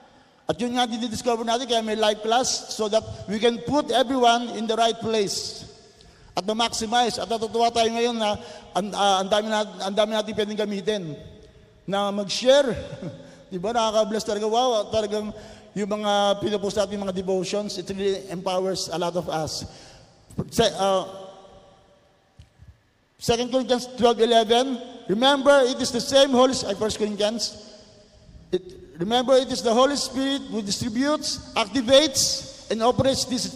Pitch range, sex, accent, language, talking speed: 195-235 Hz, male, native, Filipino, 140 wpm